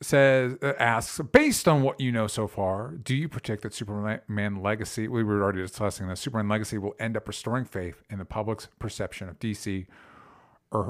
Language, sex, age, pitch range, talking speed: English, male, 50-69, 105-140 Hz, 185 wpm